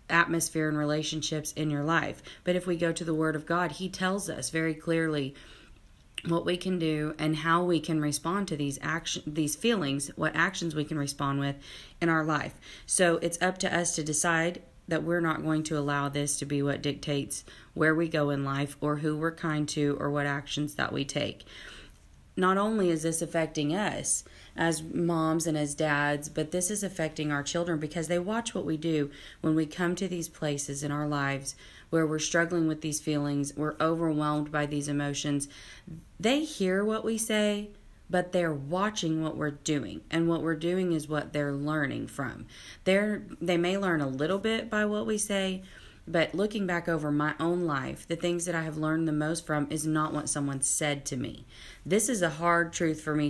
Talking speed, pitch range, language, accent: 205 wpm, 150-170 Hz, English, American